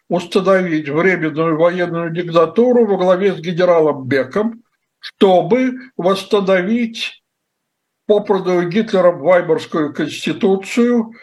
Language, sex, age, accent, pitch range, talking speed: Russian, male, 60-79, native, 155-200 Hz, 80 wpm